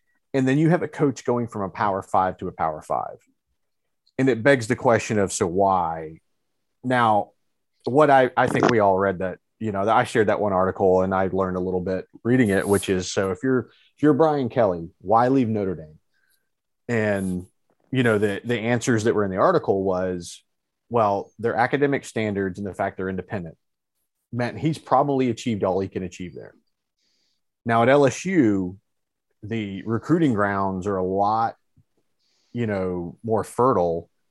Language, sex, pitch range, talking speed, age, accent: English, male, 95-120 Hz, 180 wpm, 30-49, American